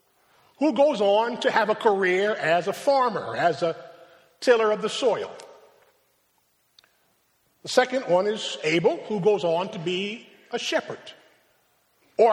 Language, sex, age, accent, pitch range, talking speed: English, male, 50-69, American, 180-255 Hz, 140 wpm